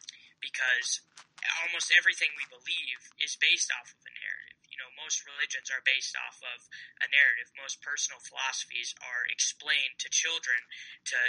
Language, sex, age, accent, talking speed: English, male, 10-29, American, 155 wpm